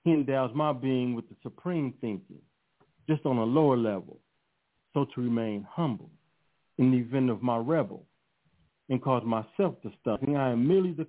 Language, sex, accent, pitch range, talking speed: English, male, American, 120-155 Hz, 175 wpm